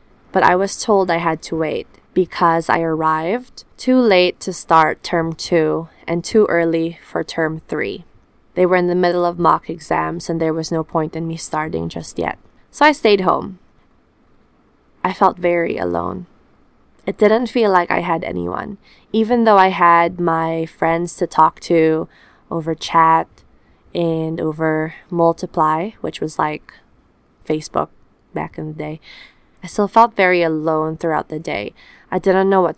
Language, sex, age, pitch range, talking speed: English, female, 20-39, 160-185 Hz, 165 wpm